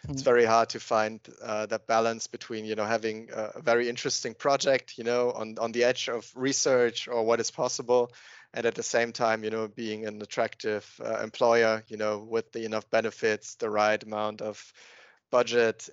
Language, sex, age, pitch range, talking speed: German, male, 30-49, 115-130 Hz, 190 wpm